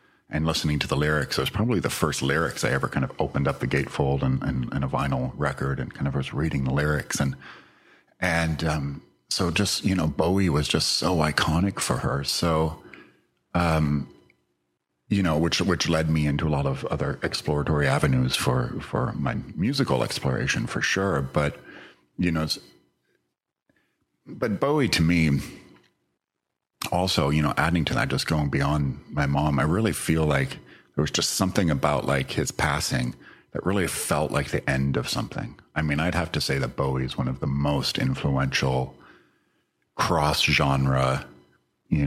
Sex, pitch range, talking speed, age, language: male, 70-80 Hz, 170 wpm, 40-59, English